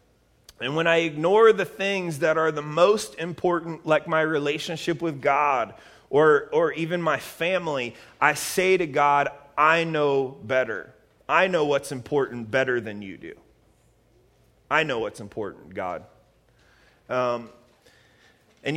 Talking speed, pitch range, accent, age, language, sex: 140 wpm, 145-185 Hz, American, 30-49, English, male